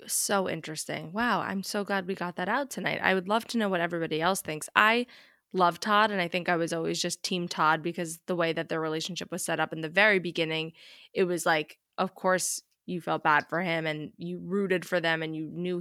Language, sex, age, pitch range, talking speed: English, female, 20-39, 170-200 Hz, 240 wpm